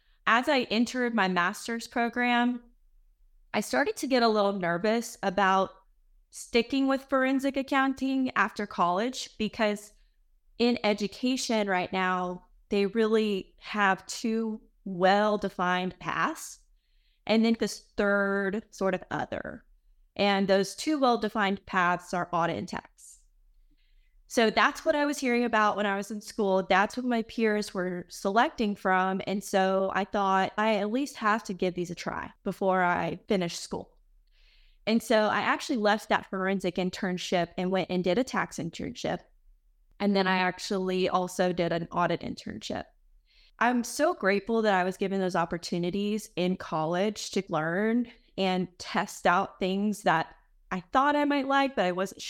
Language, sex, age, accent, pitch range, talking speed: English, female, 20-39, American, 185-230 Hz, 155 wpm